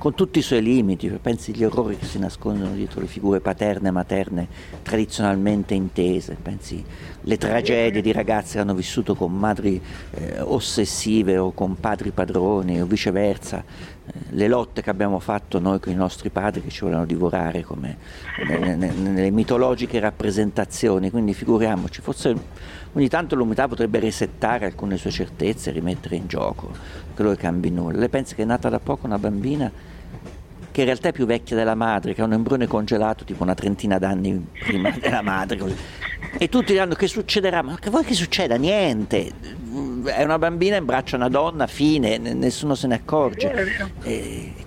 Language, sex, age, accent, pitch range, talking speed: Italian, male, 50-69, native, 95-125 Hz, 175 wpm